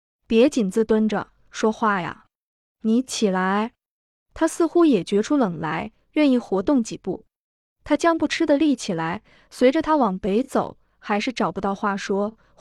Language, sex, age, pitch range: Chinese, female, 20-39, 210-255 Hz